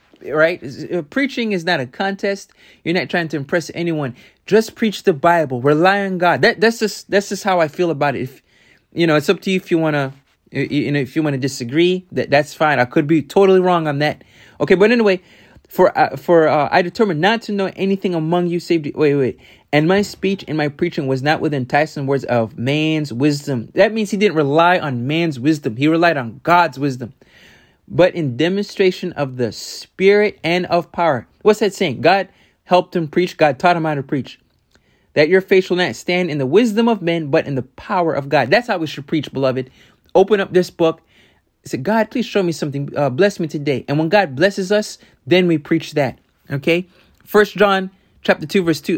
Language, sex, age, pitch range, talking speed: English, male, 20-39, 145-195 Hz, 220 wpm